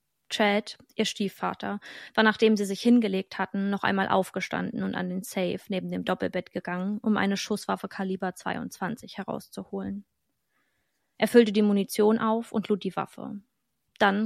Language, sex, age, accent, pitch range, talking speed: German, female, 20-39, German, 190-215 Hz, 150 wpm